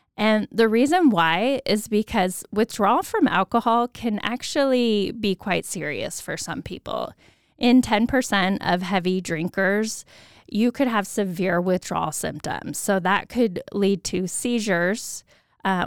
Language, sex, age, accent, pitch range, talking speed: English, female, 10-29, American, 180-220 Hz, 130 wpm